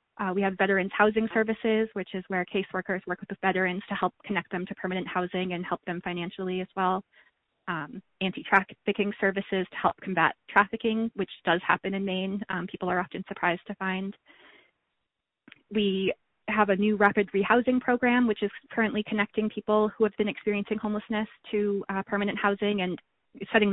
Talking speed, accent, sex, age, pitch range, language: 175 wpm, American, female, 20-39, 180-205 Hz, English